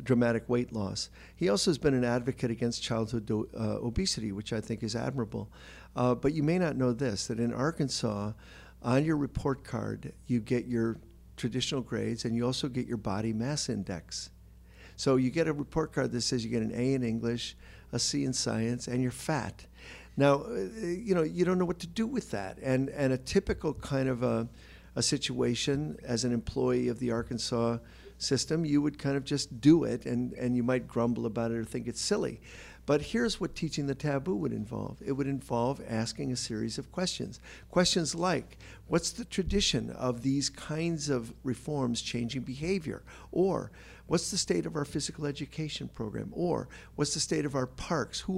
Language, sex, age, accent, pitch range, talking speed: English, male, 50-69, American, 120-150 Hz, 195 wpm